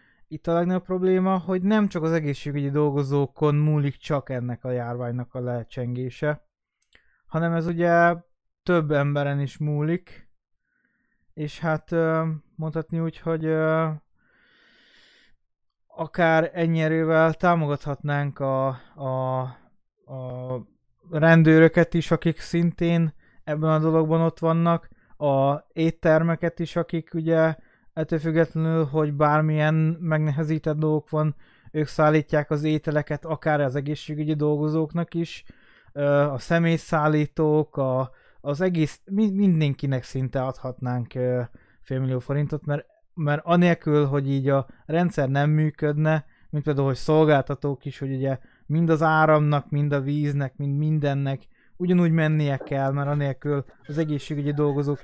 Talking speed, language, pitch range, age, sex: 115 wpm, Hungarian, 140-160 Hz, 20-39, male